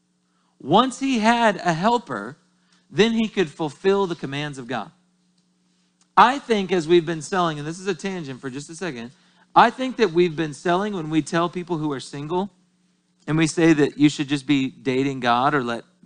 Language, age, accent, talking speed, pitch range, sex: English, 40-59, American, 200 wpm, 135-190 Hz, male